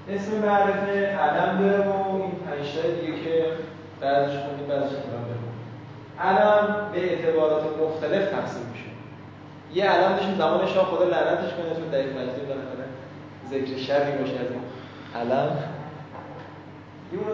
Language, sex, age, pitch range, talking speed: Persian, male, 20-39, 145-195 Hz, 150 wpm